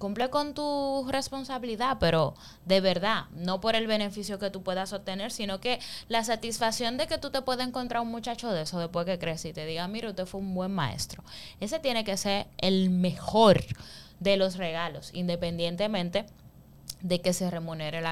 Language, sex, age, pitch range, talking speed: Spanish, female, 10-29, 170-225 Hz, 185 wpm